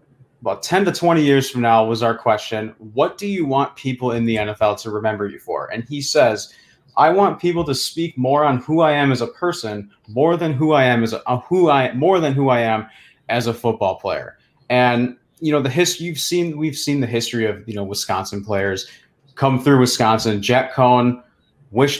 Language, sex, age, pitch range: English, male, 30-49, 110-135 Hz